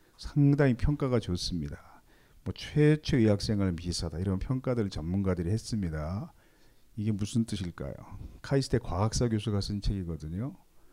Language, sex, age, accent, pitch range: Korean, male, 40-59, native, 90-120 Hz